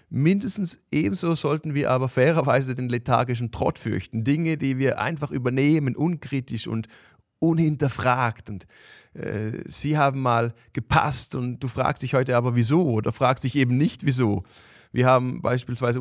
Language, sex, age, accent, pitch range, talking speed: German, male, 30-49, German, 125-155 Hz, 150 wpm